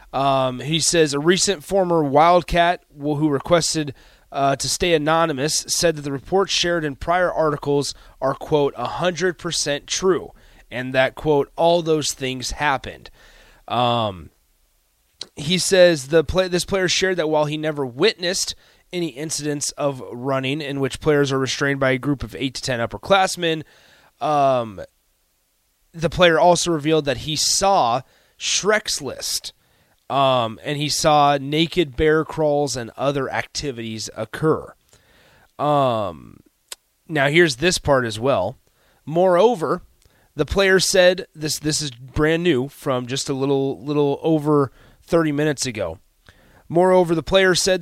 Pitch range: 135-170 Hz